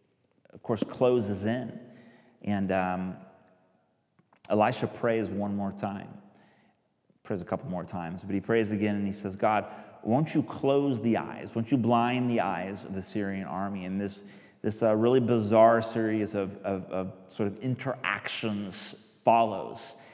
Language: English